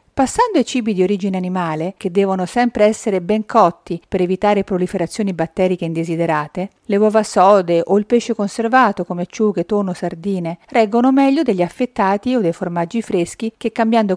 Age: 50-69